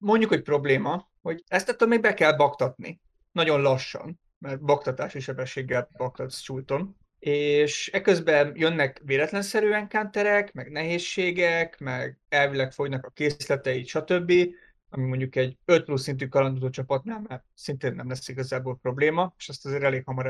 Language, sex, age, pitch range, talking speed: Hungarian, male, 30-49, 130-180 Hz, 145 wpm